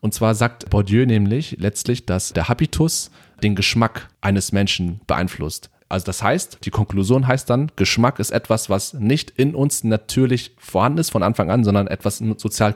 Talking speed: 175 wpm